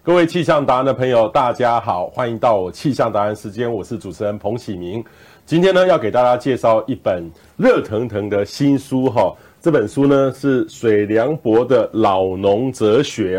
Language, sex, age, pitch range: Chinese, male, 30-49, 105-140 Hz